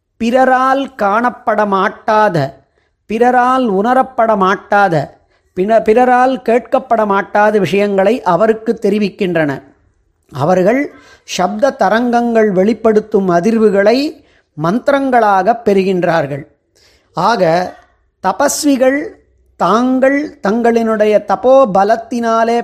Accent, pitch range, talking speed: native, 180-240 Hz, 65 wpm